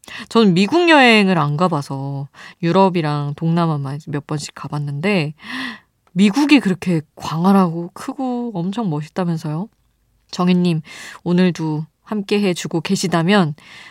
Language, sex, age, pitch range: Korean, female, 20-39, 155-195 Hz